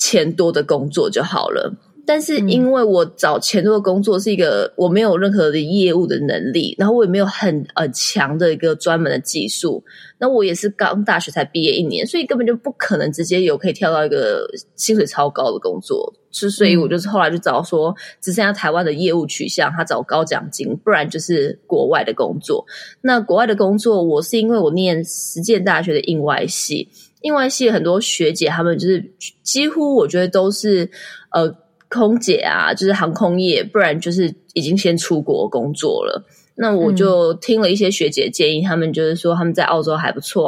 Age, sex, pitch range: 20-39, female, 170-230 Hz